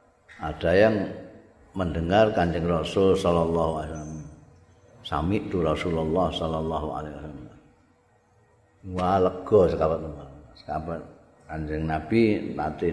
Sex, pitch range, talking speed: male, 85-135 Hz, 80 wpm